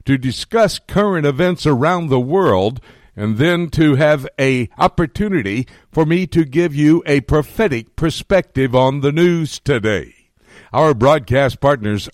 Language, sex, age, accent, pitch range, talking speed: English, male, 60-79, American, 120-165 Hz, 140 wpm